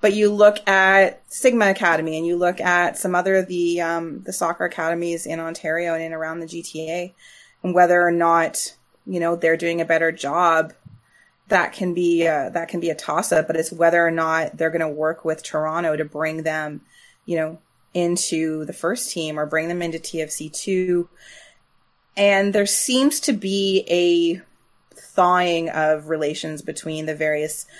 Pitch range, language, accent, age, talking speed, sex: 155-175 Hz, English, American, 20-39, 180 wpm, female